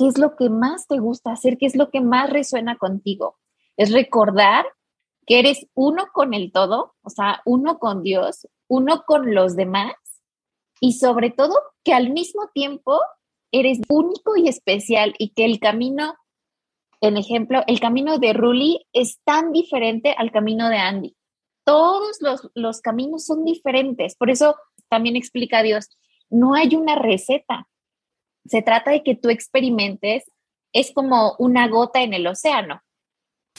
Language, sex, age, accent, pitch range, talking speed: Spanish, female, 20-39, Mexican, 215-275 Hz, 160 wpm